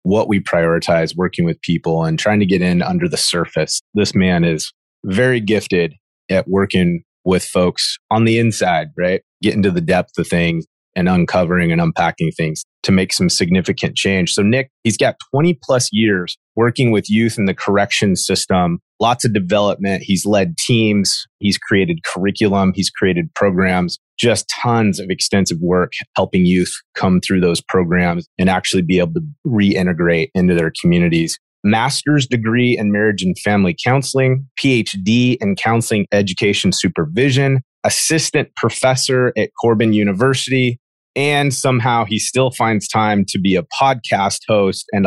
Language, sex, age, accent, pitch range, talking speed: English, male, 30-49, American, 90-125 Hz, 155 wpm